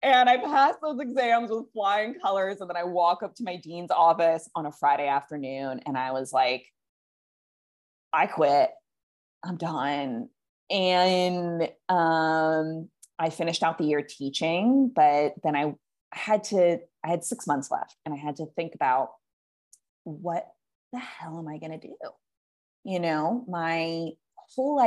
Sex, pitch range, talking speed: female, 155-210 Hz, 155 wpm